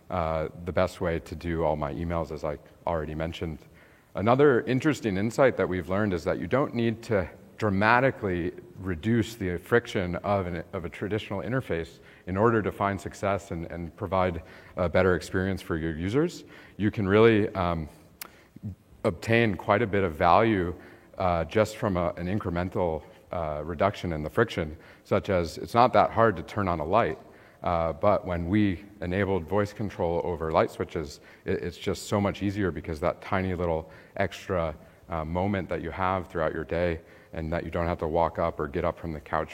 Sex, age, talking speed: male, 40-59, 185 wpm